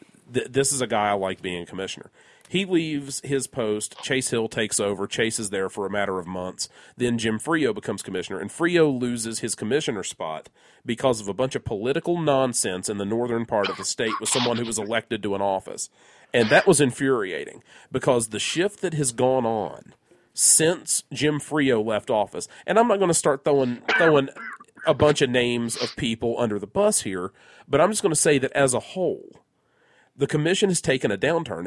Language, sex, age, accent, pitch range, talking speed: English, male, 40-59, American, 110-150 Hz, 210 wpm